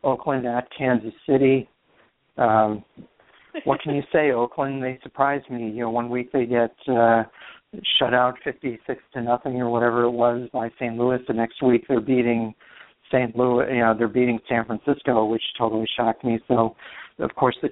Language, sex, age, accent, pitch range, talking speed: English, male, 50-69, American, 115-130 Hz, 180 wpm